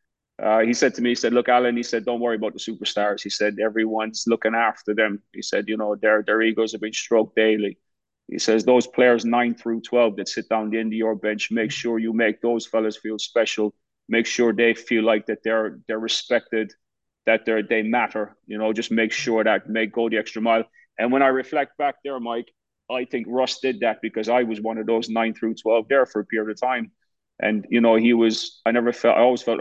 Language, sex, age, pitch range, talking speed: English, male, 30-49, 110-125 Hz, 240 wpm